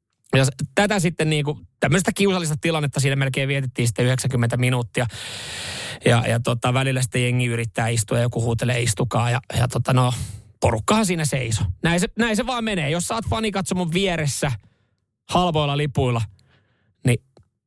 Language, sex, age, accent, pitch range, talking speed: Finnish, male, 20-39, native, 125-165 Hz, 160 wpm